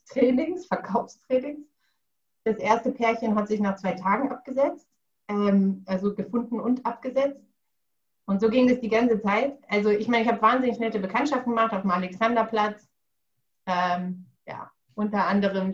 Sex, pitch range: female, 200-250 Hz